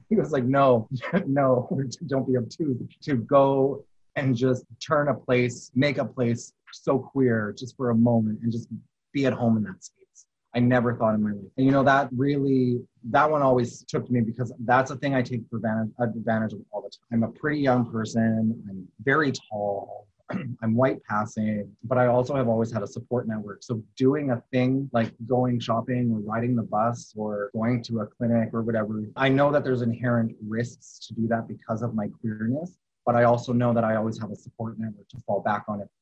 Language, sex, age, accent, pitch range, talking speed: English, male, 30-49, American, 110-130 Hz, 210 wpm